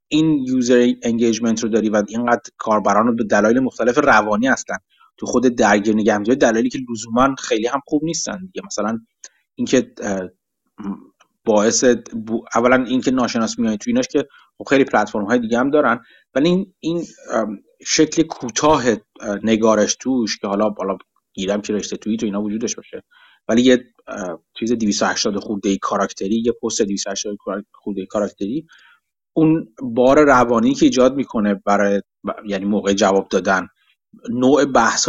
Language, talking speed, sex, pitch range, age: Persian, 135 wpm, male, 105-145 Hz, 30-49